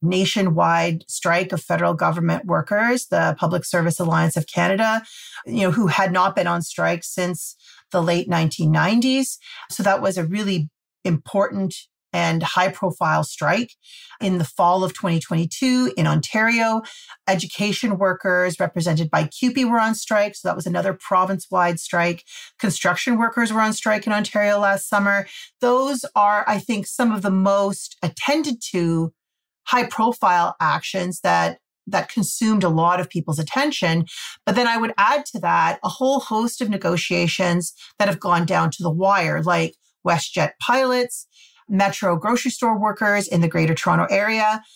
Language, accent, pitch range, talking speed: English, American, 175-220 Hz, 155 wpm